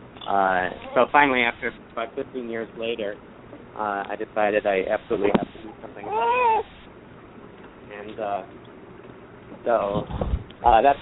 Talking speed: 125 wpm